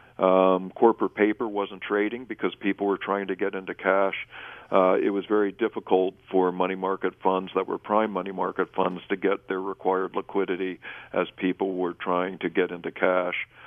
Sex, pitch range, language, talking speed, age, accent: male, 95-105 Hz, English, 180 wpm, 50-69, American